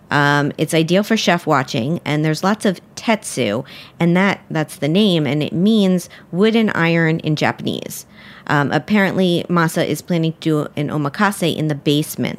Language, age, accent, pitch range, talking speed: English, 50-69, American, 150-190 Hz, 175 wpm